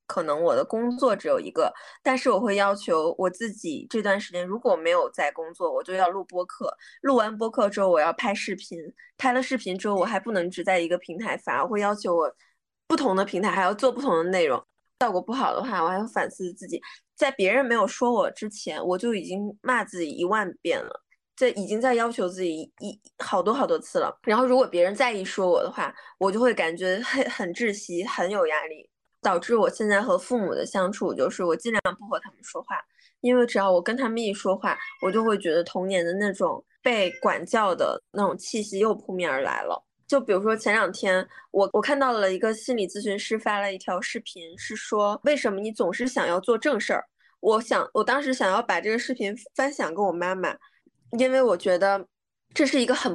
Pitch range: 190-260 Hz